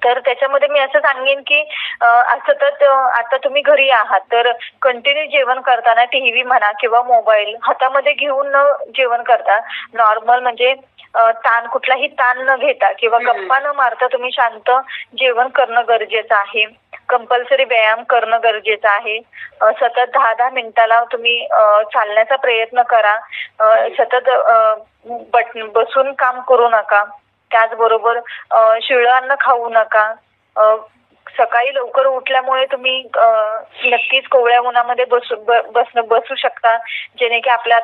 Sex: female